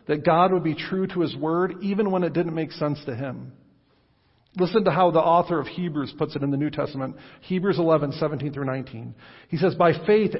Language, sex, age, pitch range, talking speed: English, male, 50-69, 145-180 Hz, 215 wpm